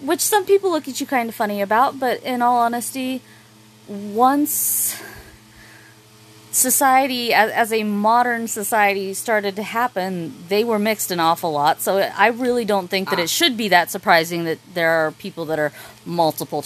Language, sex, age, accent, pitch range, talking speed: English, female, 30-49, American, 175-245 Hz, 175 wpm